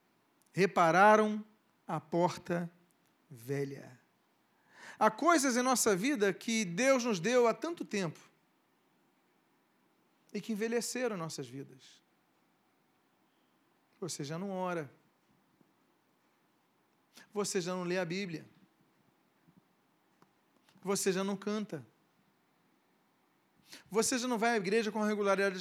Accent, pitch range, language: Brazilian, 190-235 Hz, Portuguese